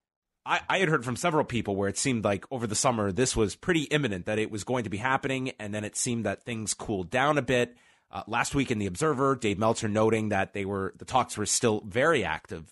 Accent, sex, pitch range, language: American, male, 100-130 Hz, English